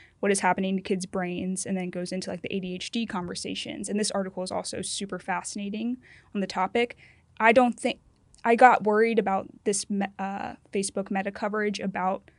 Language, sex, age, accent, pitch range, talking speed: English, female, 20-39, American, 185-215 Hz, 180 wpm